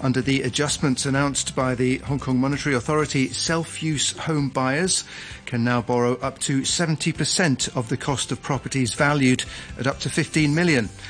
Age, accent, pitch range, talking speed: 40-59, British, 125-155 Hz, 160 wpm